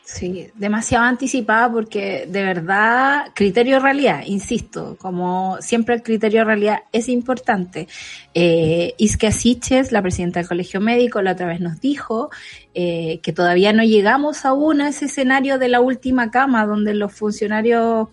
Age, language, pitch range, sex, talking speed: 20-39, Spanish, 205-255 Hz, female, 150 wpm